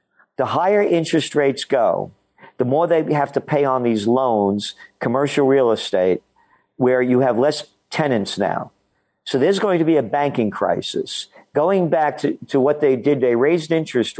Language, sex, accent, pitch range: English, male, American, 120-150 Hz